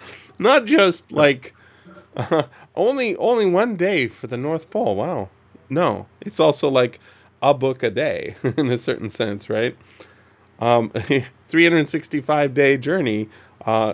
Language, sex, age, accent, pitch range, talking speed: English, male, 20-39, American, 105-135 Hz, 130 wpm